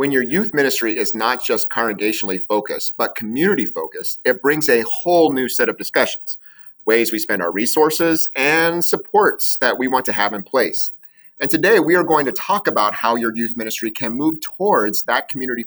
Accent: American